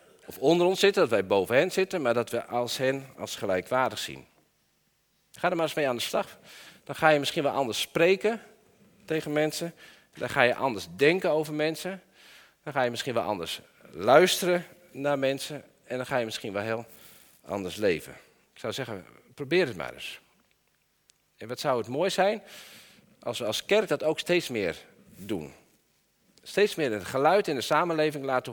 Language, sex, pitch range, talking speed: Dutch, male, 115-165 Hz, 185 wpm